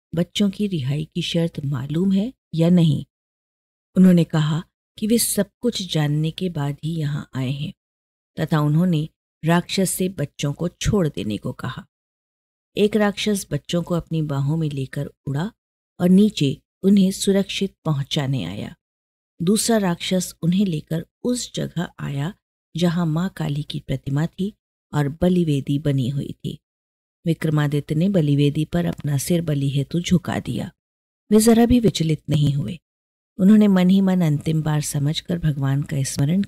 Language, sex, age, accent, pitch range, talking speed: Hindi, female, 50-69, native, 145-185 Hz, 150 wpm